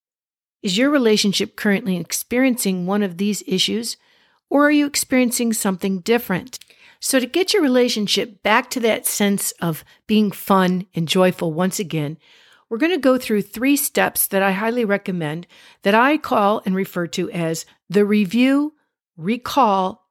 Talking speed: 155 wpm